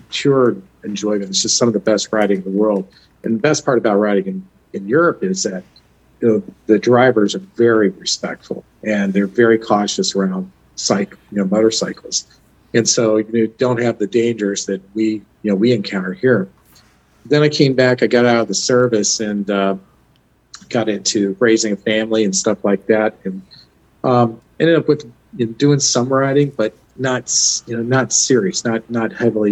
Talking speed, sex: 185 wpm, male